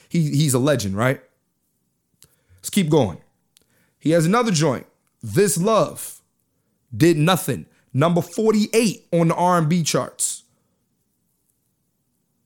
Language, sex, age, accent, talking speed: English, male, 30-49, American, 100 wpm